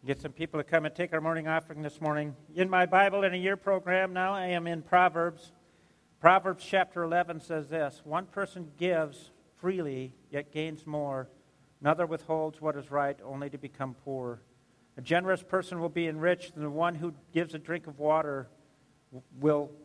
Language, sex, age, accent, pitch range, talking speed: English, male, 50-69, American, 140-175 Hz, 185 wpm